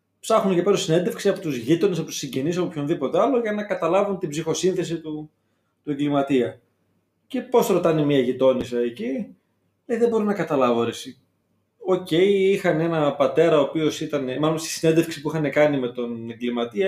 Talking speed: 170 wpm